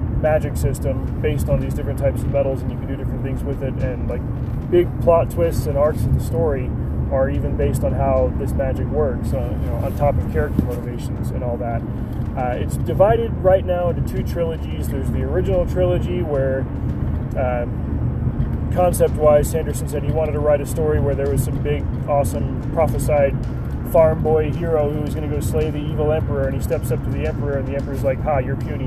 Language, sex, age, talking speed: English, male, 20-39, 210 wpm